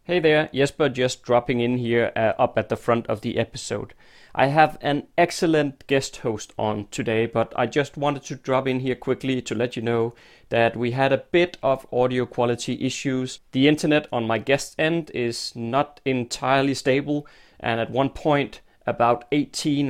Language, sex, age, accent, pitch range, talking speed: English, male, 30-49, Danish, 120-145 Hz, 185 wpm